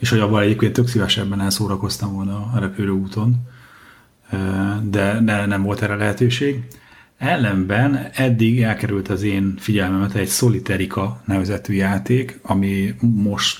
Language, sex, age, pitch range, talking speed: Hungarian, male, 30-49, 95-115 Hz, 130 wpm